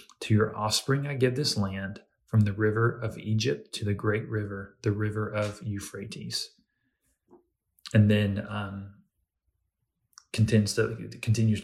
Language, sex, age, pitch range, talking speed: English, male, 30-49, 95-110 Hz, 125 wpm